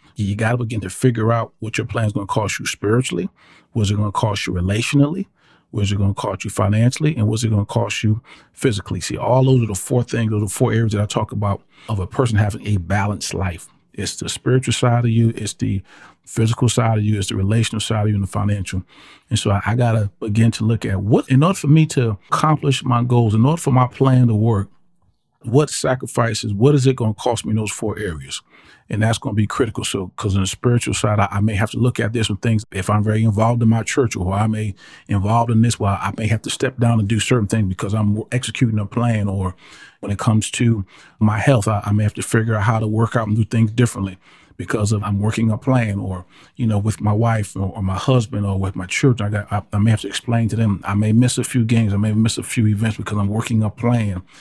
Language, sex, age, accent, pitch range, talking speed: English, male, 40-59, American, 105-120 Hz, 265 wpm